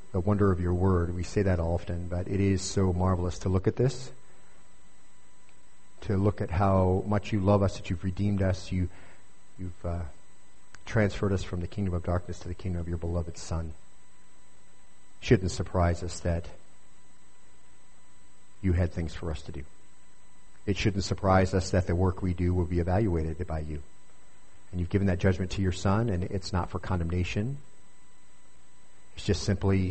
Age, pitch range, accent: 40-59, 85-100 Hz, American